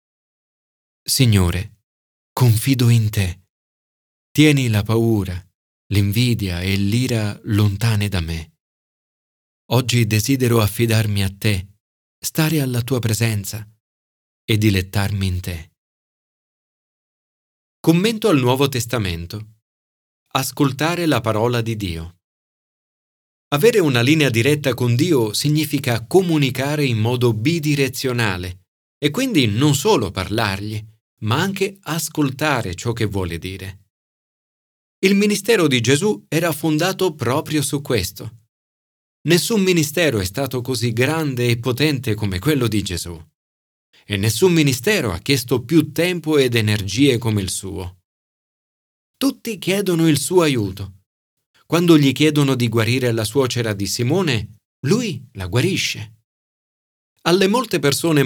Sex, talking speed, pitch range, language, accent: male, 115 wpm, 100-150 Hz, Italian, native